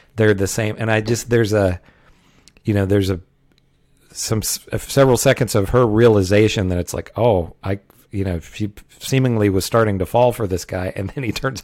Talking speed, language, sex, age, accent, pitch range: 195 wpm, English, male, 40-59, American, 95-115 Hz